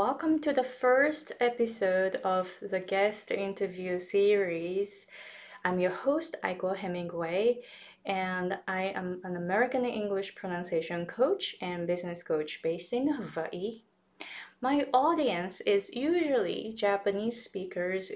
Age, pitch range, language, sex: 20-39, 180-245 Hz, Japanese, female